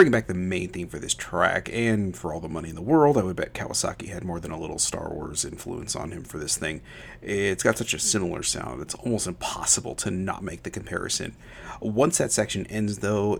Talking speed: 230 wpm